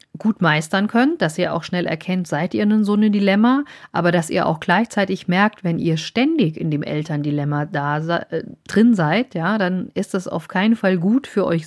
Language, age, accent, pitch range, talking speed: German, 40-59, German, 170-210 Hz, 200 wpm